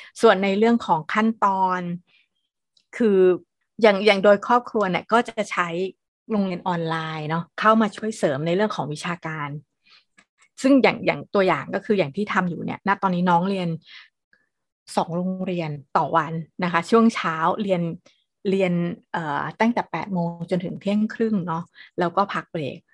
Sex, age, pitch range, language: female, 20-39, 175-215 Hz, Thai